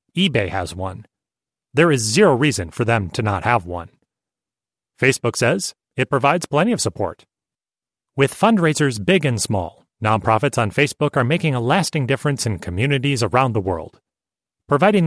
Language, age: English, 30-49